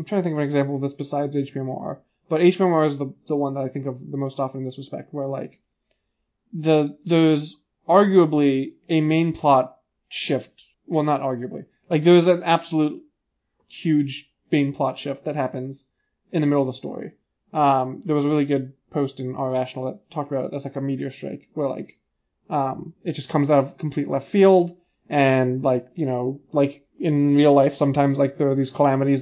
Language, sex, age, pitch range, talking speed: English, male, 20-39, 135-160 Hz, 205 wpm